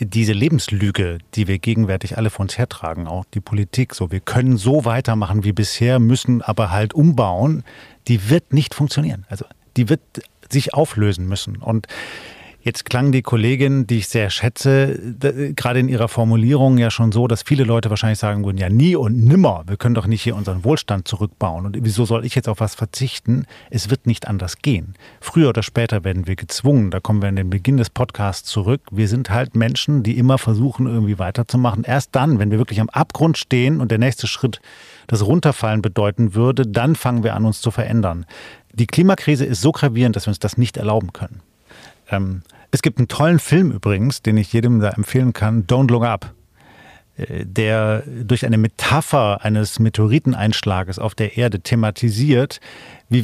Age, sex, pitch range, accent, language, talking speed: 40-59, male, 105-135 Hz, German, German, 185 wpm